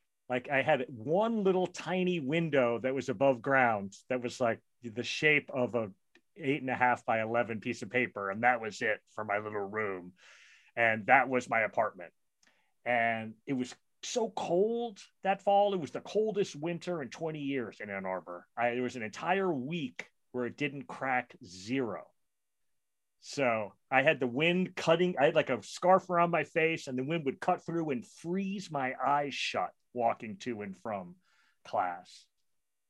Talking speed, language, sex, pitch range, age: 180 wpm, English, male, 120-170 Hz, 30-49